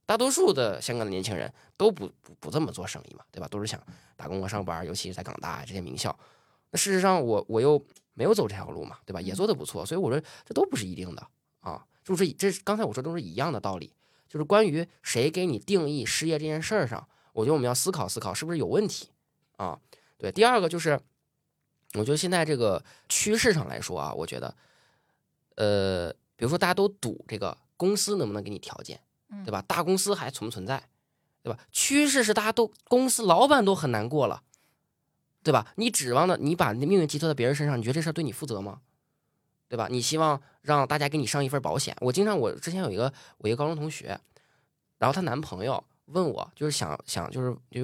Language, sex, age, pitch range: Chinese, male, 20-39, 120-180 Hz